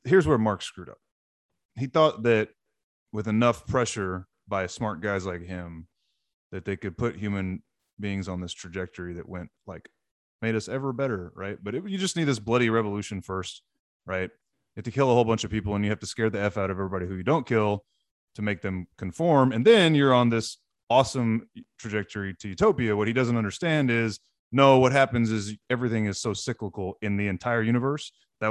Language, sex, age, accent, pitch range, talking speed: English, male, 20-39, American, 100-125 Hz, 200 wpm